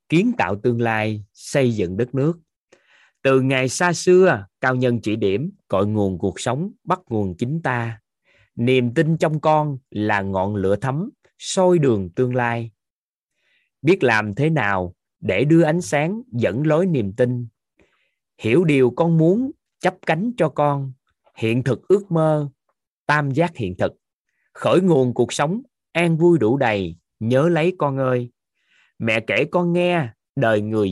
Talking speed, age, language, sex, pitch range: 160 wpm, 20-39, Vietnamese, male, 115-165 Hz